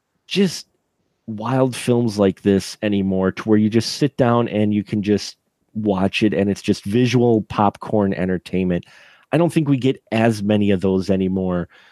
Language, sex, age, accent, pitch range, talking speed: English, male, 30-49, American, 105-140 Hz, 170 wpm